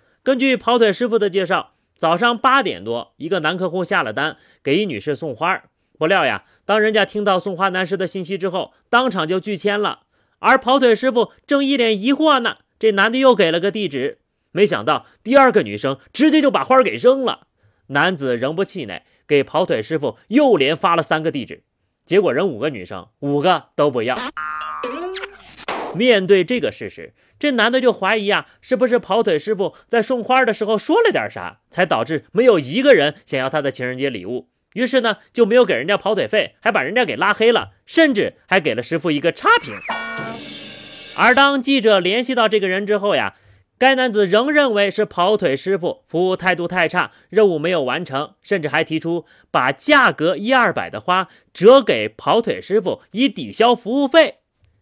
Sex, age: male, 30-49